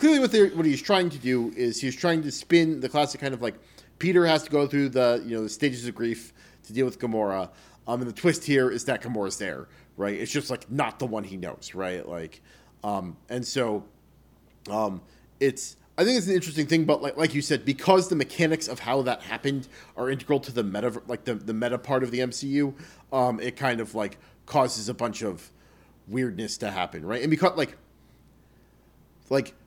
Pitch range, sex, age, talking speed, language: 120-160 Hz, male, 30-49, 215 wpm, English